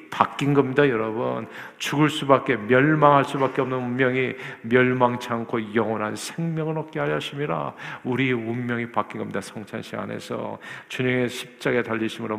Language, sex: Korean, male